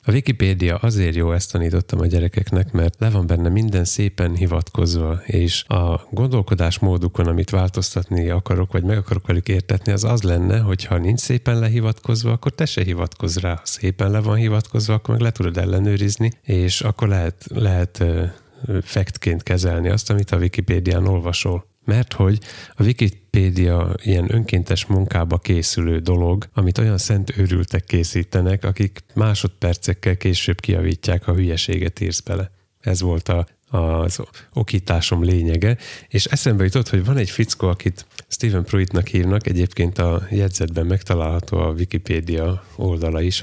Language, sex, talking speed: Hungarian, male, 150 wpm